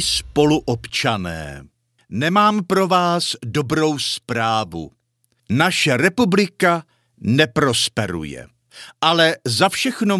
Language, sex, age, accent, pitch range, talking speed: Czech, male, 50-69, native, 120-160 Hz, 70 wpm